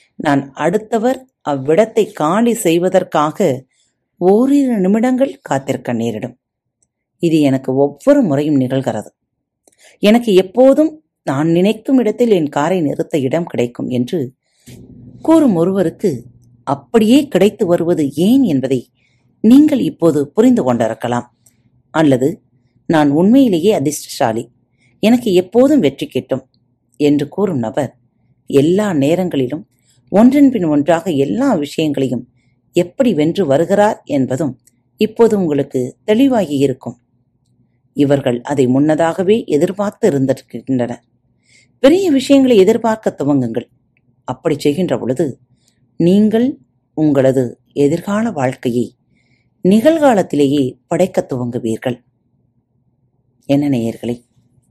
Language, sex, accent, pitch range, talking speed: Tamil, female, native, 125-195 Hz, 85 wpm